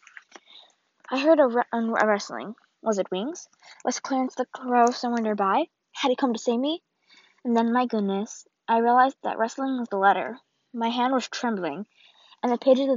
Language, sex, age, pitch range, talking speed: English, female, 20-39, 225-275 Hz, 180 wpm